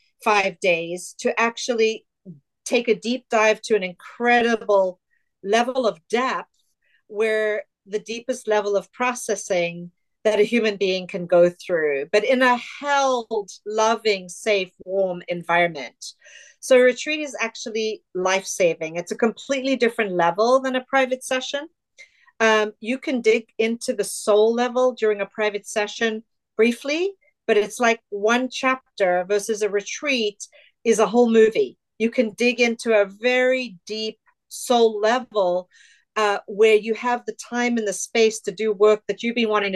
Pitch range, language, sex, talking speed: 205-245 Hz, English, female, 150 wpm